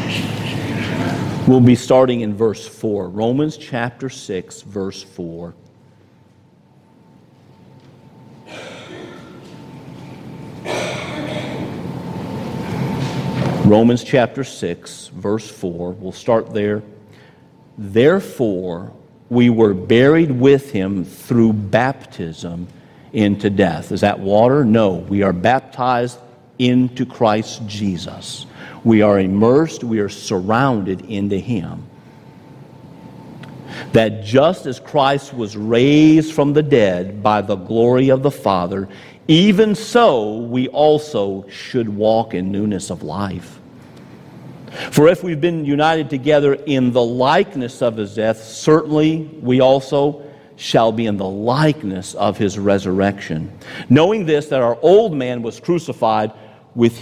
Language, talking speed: English, 110 wpm